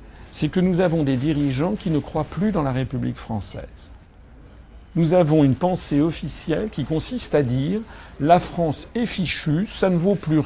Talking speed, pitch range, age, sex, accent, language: 180 wpm, 120-155 Hz, 50-69, male, French, French